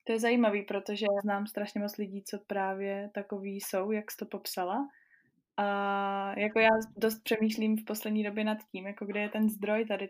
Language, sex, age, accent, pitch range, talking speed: Czech, female, 20-39, native, 190-215 Hz, 195 wpm